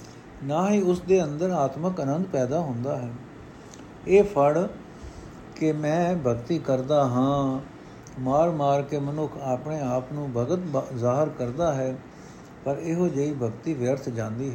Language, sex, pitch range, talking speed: Punjabi, male, 130-170 Hz, 140 wpm